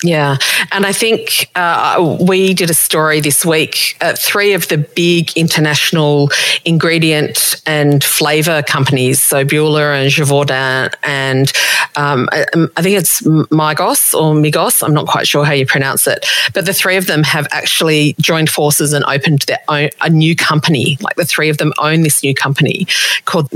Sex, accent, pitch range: female, Australian, 140-160 Hz